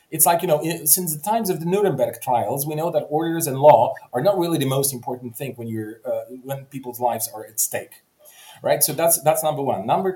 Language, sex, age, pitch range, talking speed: English, male, 30-49, 115-155 Hz, 235 wpm